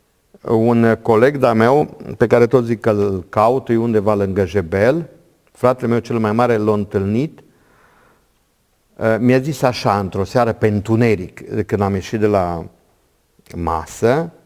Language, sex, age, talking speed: Romanian, male, 50-69, 140 wpm